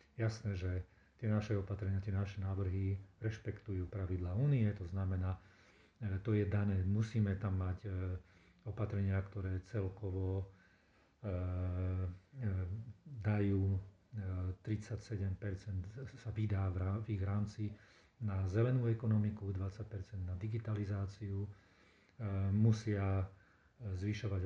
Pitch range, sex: 95-110 Hz, male